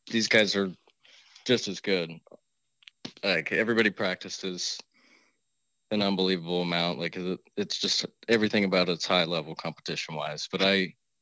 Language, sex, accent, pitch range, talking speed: English, male, American, 90-100 Hz, 130 wpm